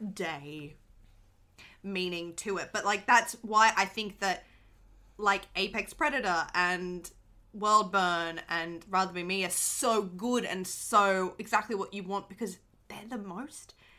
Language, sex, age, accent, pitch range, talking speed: English, female, 20-39, Australian, 180-245 Hz, 145 wpm